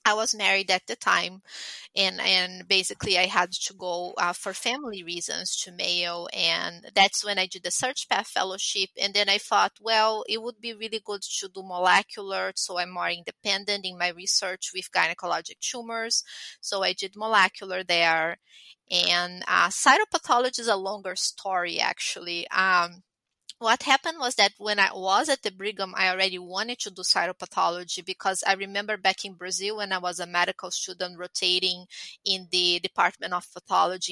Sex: female